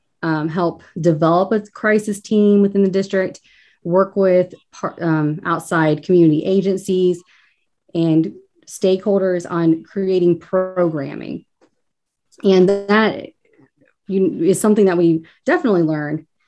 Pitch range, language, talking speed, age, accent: 160-200 Hz, English, 100 wpm, 30-49, American